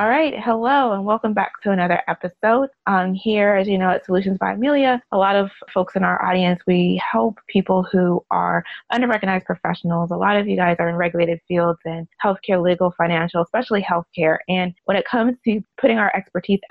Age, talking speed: 20-39, 200 wpm